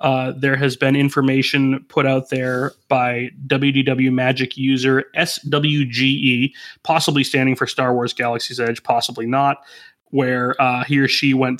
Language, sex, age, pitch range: English, male, 30-49, 125-140 Hz